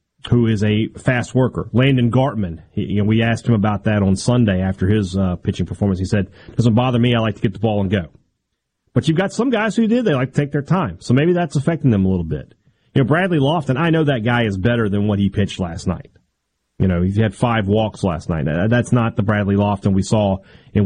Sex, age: male, 30-49